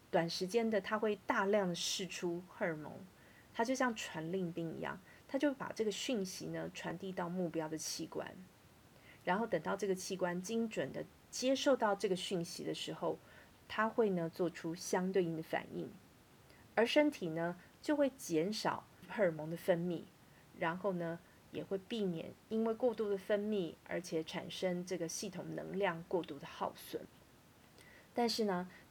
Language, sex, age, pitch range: Chinese, female, 30-49, 170-210 Hz